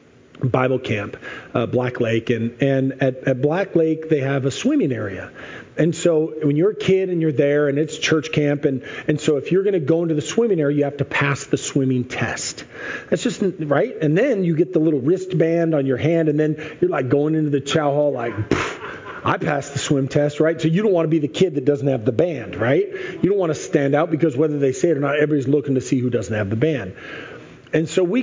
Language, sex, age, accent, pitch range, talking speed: English, male, 40-59, American, 135-170 Hz, 245 wpm